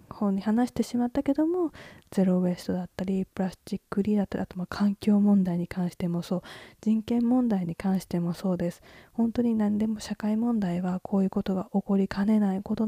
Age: 20-39